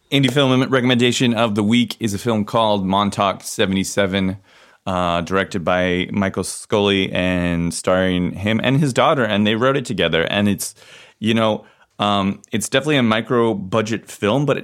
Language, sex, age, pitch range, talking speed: English, male, 30-49, 90-110 Hz, 160 wpm